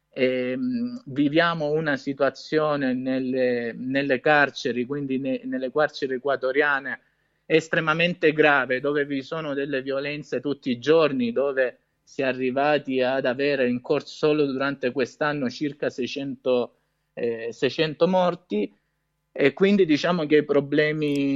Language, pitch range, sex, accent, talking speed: Italian, 130-160 Hz, male, native, 125 wpm